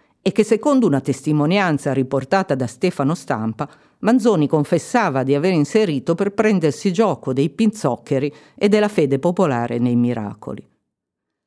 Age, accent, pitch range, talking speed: 50-69, native, 135-190 Hz, 130 wpm